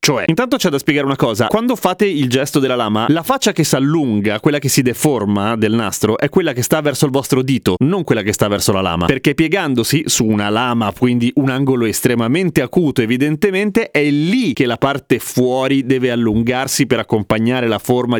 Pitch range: 120-180 Hz